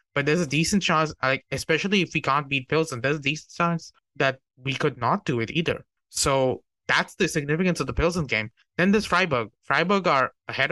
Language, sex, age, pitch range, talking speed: English, male, 20-39, 130-165 Hz, 205 wpm